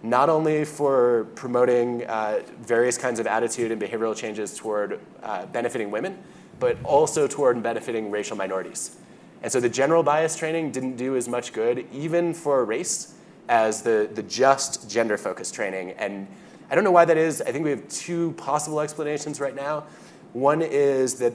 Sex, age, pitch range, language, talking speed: male, 20-39, 105-150 Hz, English, 170 wpm